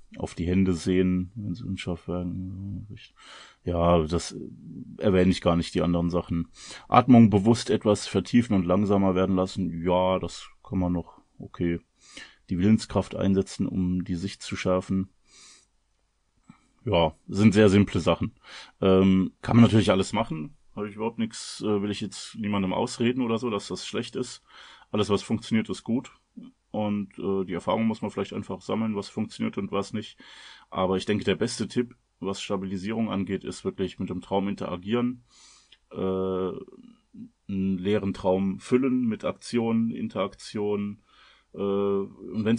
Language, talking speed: German, 155 wpm